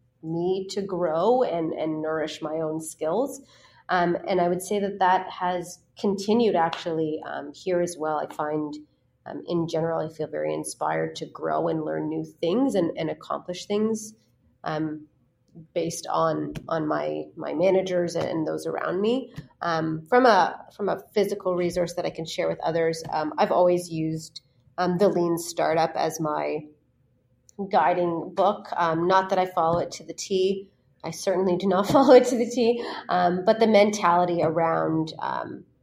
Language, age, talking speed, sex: English, 30-49, 170 wpm, female